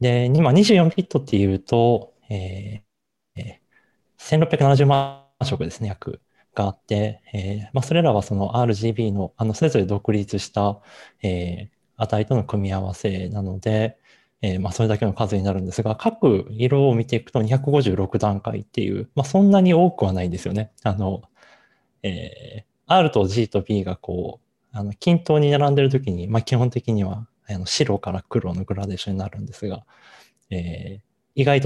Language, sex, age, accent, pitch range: English, male, 20-39, Japanese, 100-130 Hz